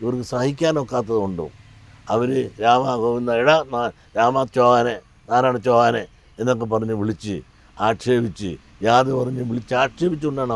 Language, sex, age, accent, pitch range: English, male, 60-79, Indian, 115-160 Hz